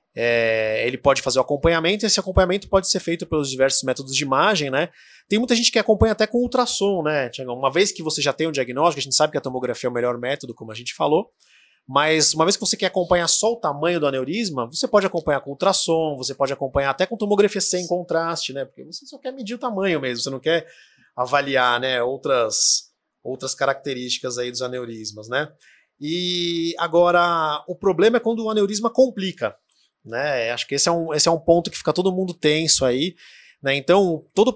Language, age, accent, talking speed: Portuguese, 20-39, Brazilian, 210 wpm